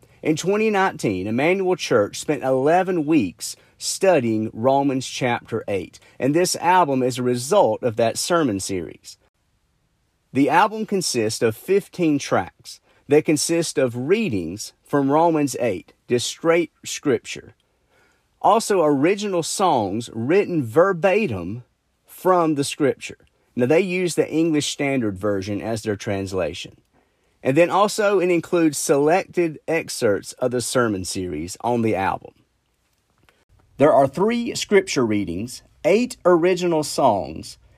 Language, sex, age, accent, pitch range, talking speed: English, male, 40-59, American, 120-170 Hz, 120 wpm